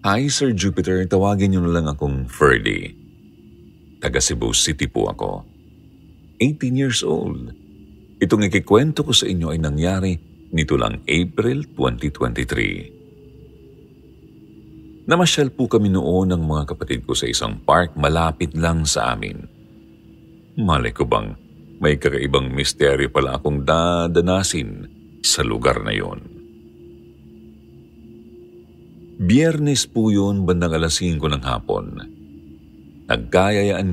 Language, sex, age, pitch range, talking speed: Filipino, male, 50-69, 75-110 Hz, 110 wpm